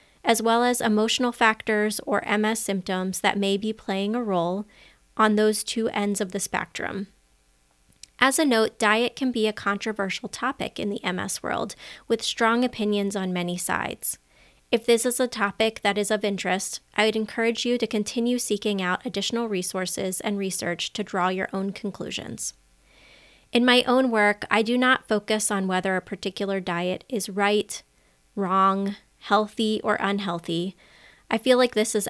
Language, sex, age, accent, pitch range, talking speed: English, female, 20-39, American, 195-225 Hz, 170 wpm